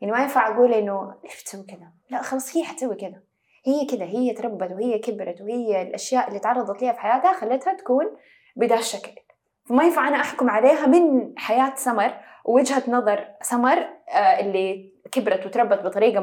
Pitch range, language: 205-260 Hz, Arabic